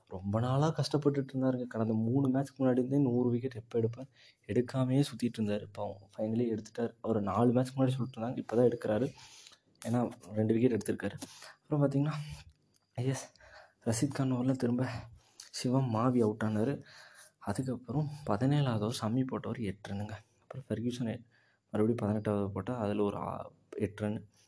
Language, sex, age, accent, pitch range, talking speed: Tamil, male, 20-39, native, 105-125 Hz, 135 wpm